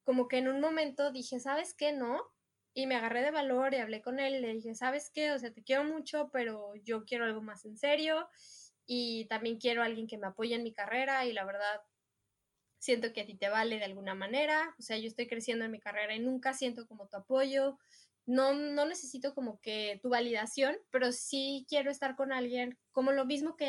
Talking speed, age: 225 wpm, 10-29